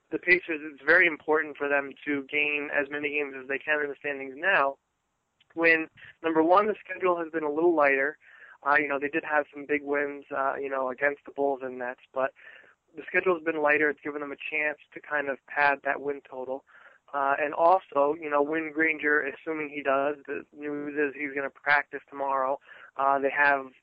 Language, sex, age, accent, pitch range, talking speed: English, male, 20-39, American, 140-155 Hz, 215 wpm